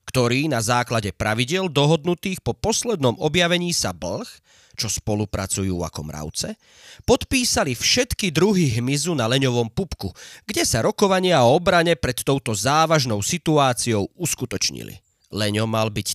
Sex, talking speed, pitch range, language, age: male, 125 wpm, 105-170 Hz, Slovak, 30-49